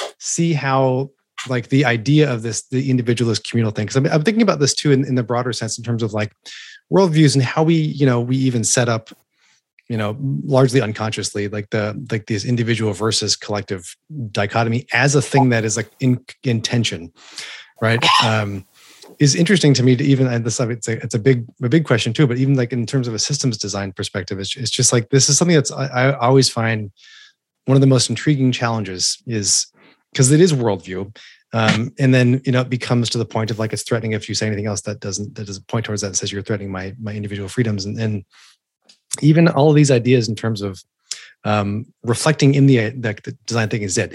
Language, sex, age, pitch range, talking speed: English, male, 30-49, 105-135 Hz, 225 wpm